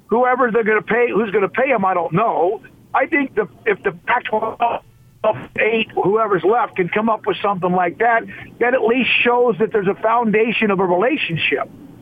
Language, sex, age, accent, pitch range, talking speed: English, male, 50-69, American, 190-235 Hz, 200 wpm